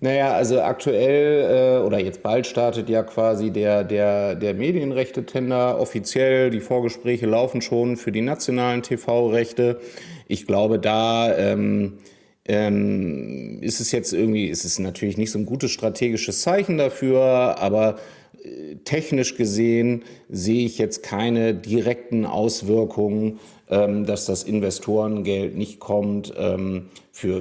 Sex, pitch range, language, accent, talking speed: male, 100-120 Hz, German, German, 120 wpm